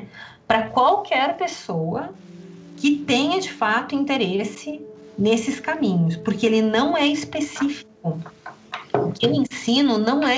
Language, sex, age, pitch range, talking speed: Portuguese, female, 30-49, 185-255 Hz, 120 wpm